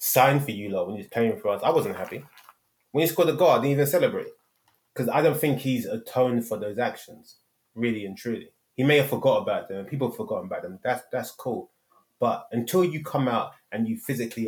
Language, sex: English, male